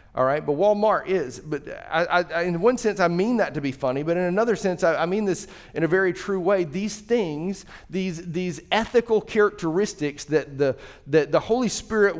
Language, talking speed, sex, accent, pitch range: English, 195 wpm, male, American, 145-195 Hz